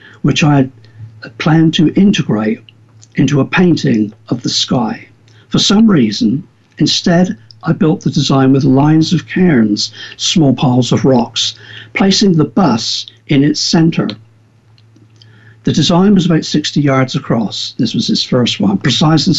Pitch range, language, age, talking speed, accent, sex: 115-165 Hz, English, 60-79, 150 wpm, British, male